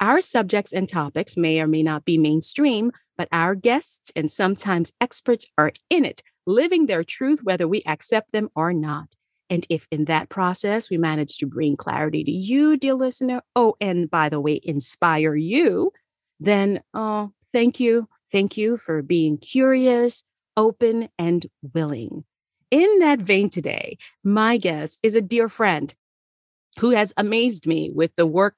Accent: American